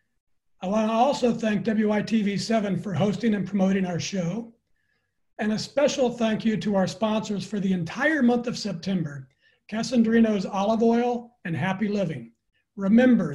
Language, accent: English, American